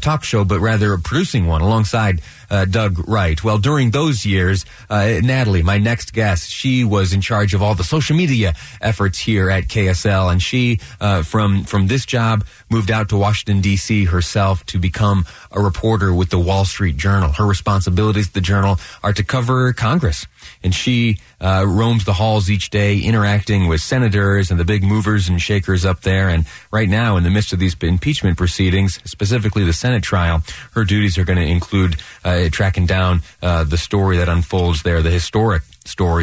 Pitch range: 90-110 Hz